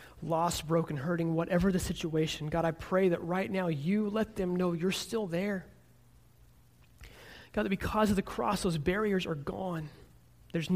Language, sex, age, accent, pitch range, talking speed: English, male, 30-49, American, 145-180 Hz, 165 wpm